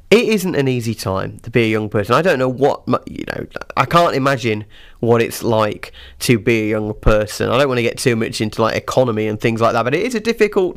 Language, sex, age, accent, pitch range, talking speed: English, male, 30-49, British, 115-145 Hz, 255 wpm